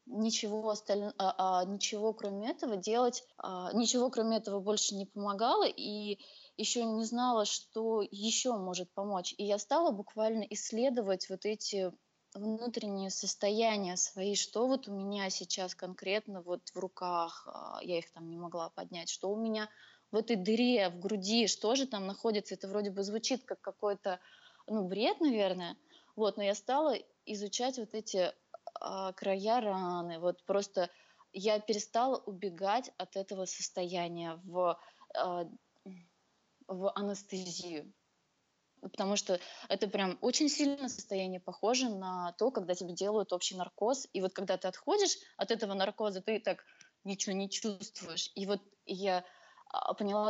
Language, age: Russian, 20-39